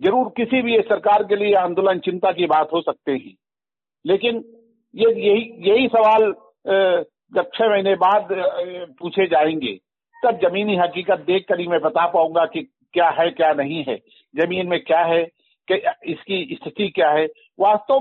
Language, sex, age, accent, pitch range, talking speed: Hindi, male, 50-69, native, 190-260 Hz, 160 wpm